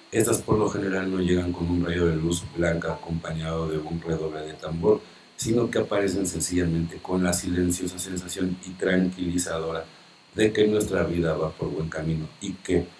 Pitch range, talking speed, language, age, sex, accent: 85-100 Hz, 175 wpm, Spanish, 50-69, male, Mexican